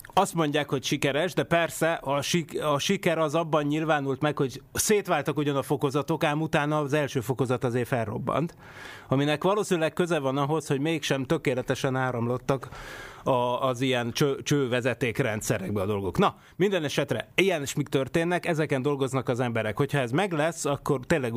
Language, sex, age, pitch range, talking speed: Hungarian, male, 30-49, 125-150 Hz, 165 wpm